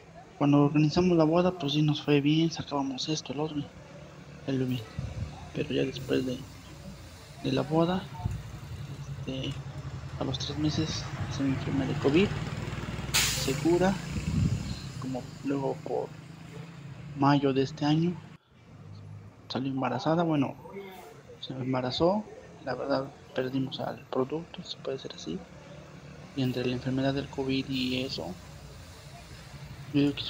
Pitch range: 130-150 Hz